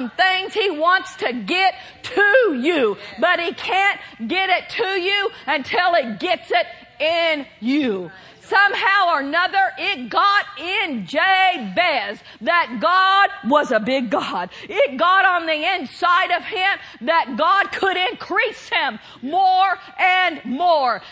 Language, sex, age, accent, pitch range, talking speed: English, female, 50-69, American, 295-380 Hz, 135 wpm